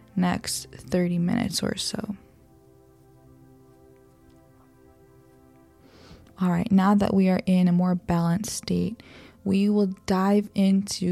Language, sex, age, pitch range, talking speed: English, female, 20-39, 175-205 Hz, 110 wpm